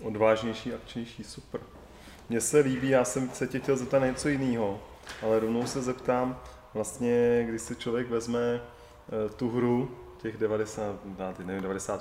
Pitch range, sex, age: 110-130 Hz, male, 20-39